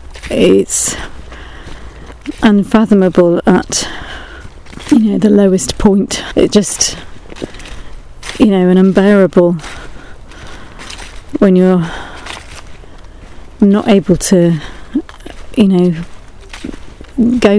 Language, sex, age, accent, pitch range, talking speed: English, female, 40-59, British, 170-205 Hz, 75 wpm